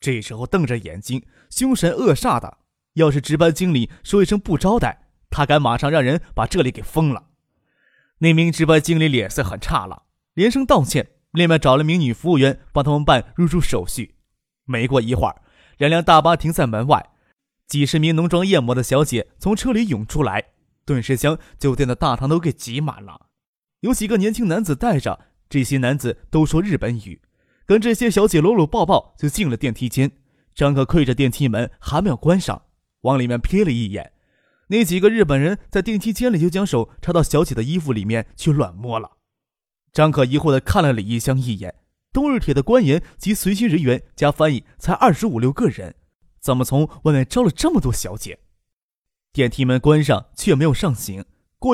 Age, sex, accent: 20-39, male, native